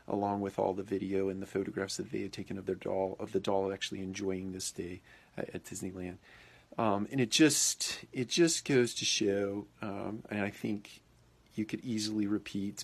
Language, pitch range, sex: English, 95-105 Hz, male